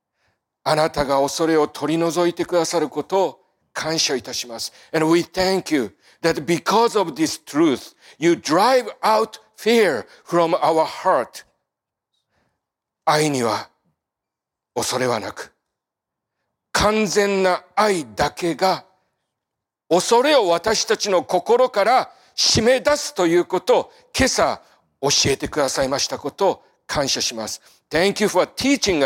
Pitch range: 155-230 Hz